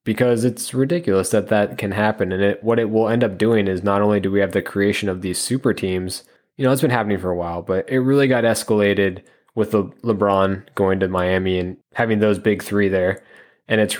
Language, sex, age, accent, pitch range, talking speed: English, male, 20-39, American, 95-115 Hz, 235 wpm